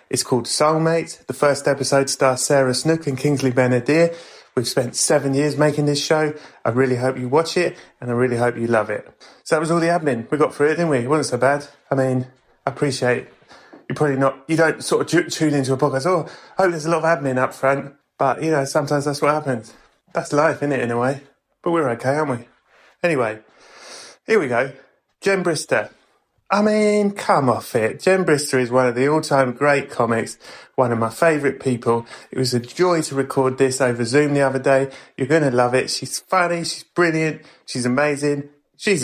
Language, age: English, 30-49